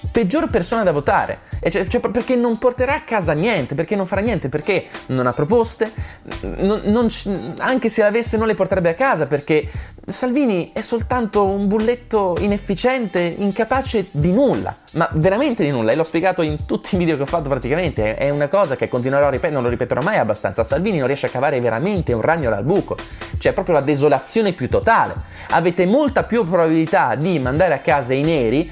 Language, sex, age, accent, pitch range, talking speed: Italian, male, 20-39, native, 120-190 Hz, 200 wpm